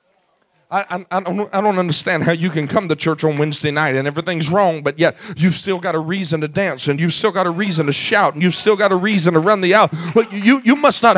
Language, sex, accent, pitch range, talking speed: English, male, American, 200-280 Hz, 275 wpm